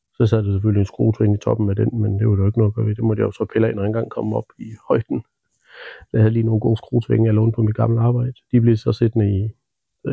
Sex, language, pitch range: male, Danish, 110-125 Hz